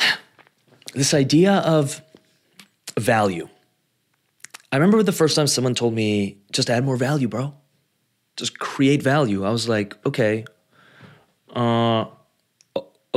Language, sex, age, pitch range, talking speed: English, male, 30-49, 105-140 Hz, 115 wpm